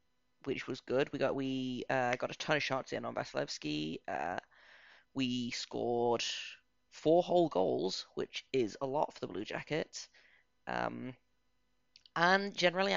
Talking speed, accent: 150 wpm, British